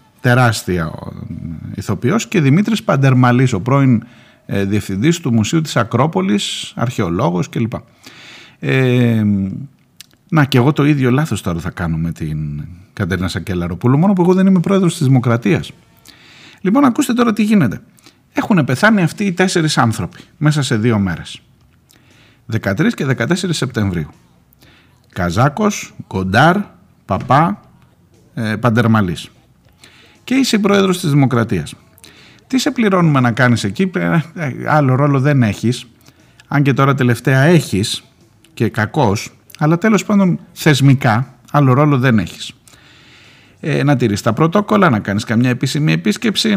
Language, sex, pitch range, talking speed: Greek, male, 110-165 Hz, 130 wpm